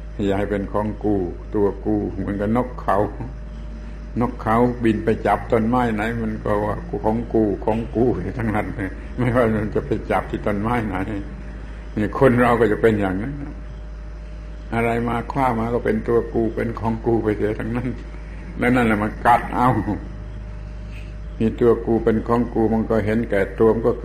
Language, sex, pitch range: Thai, male, 100-115 Hz